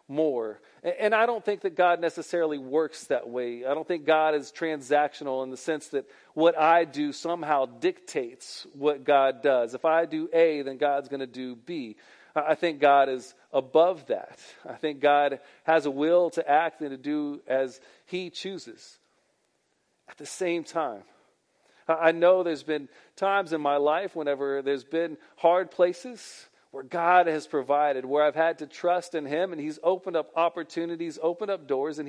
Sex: male